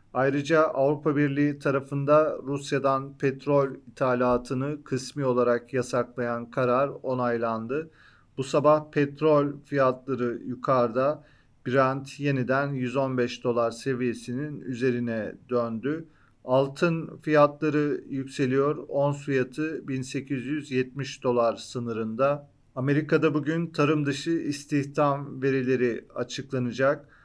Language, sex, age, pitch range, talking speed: Turkish, male, 40-59, 125-145 Hz, 85 wpm